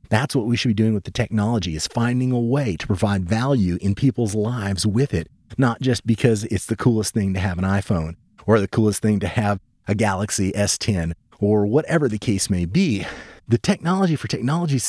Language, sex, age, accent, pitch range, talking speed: English, male, 30-49, American, 100-130 Hz, 205 wpm